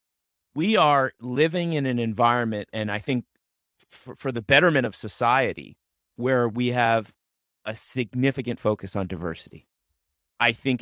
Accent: American